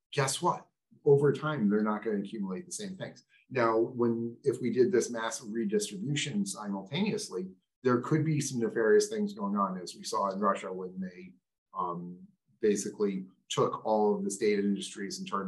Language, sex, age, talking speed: English, male, 30-49, 180 wpm